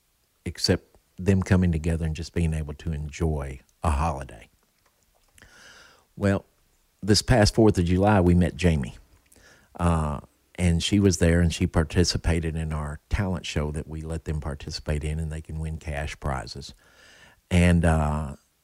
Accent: American